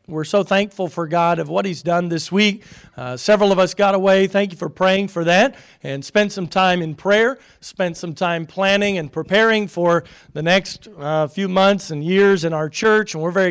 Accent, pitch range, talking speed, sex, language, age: American, 165-195 Hz, 220 wpm, male, English, 40-59